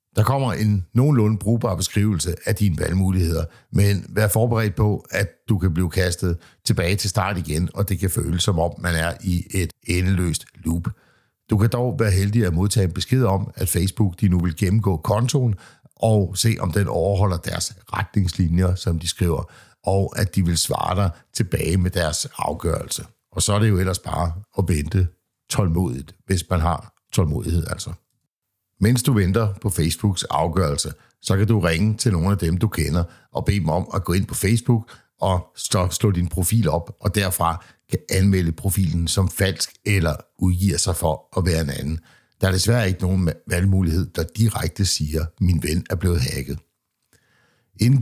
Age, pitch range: 60-79, 85-105 Hz